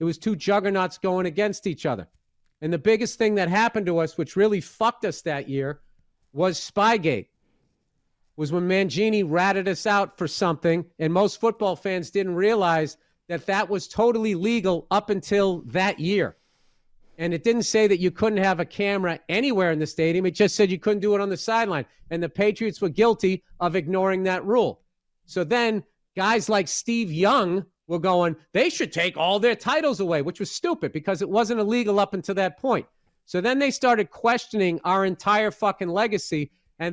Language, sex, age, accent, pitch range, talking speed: English, male, 40-59, American, 175-220 Hz, 190 wpm